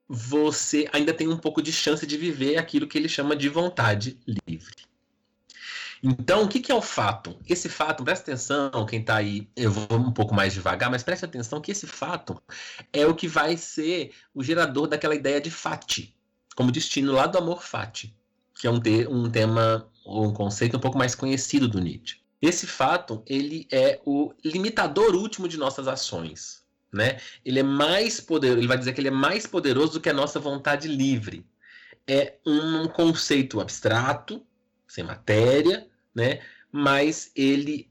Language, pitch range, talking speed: Portuguese, 110-155 Hz, 170 wpm